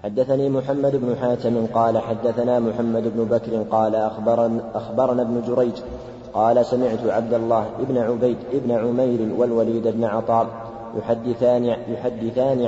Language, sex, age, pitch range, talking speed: Arabic, male, 30-49, 115-120 Hz, 125 wpm